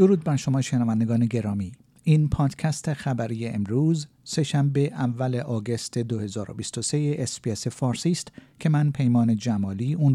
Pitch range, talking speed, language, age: 115-150 Hz, 125 wpm, Persian, 50-69